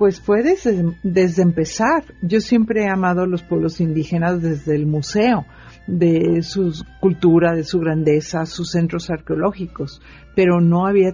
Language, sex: Spanish, female